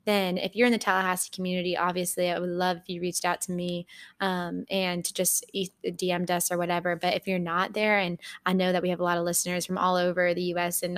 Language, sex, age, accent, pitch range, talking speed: English, female, 10-29, American, 180-205 Hz, 245 wpm